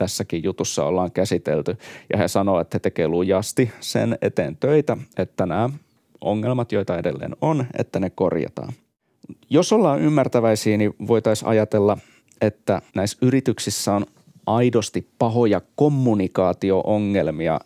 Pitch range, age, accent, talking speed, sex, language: 95-120 Hz, 30-49, native, 120 wpm, male, Finnish